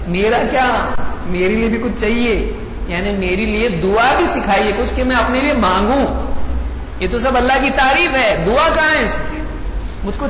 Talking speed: 180 wpm